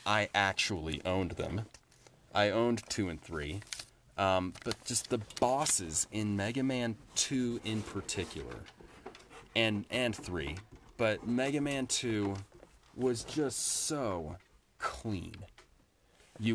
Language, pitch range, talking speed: English, 105-130 Hz, 110 wpm